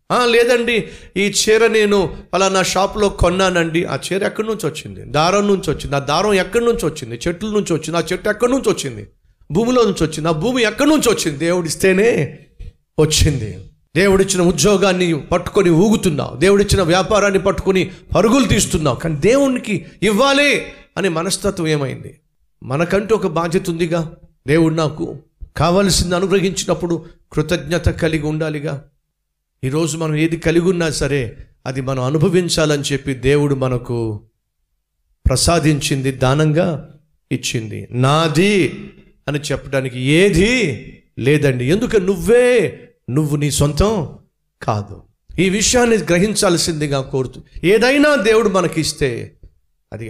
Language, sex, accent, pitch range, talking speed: Telugu, male, native, 140-190 Hz, 120 wpm